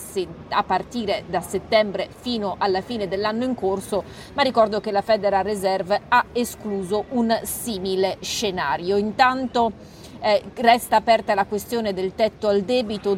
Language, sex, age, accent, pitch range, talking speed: Italian, female, 40-59, native, 195-235 Hz, 140 wpm